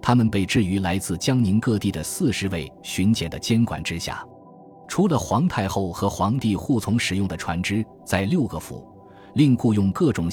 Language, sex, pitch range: Chinese, male, 90-115 Hz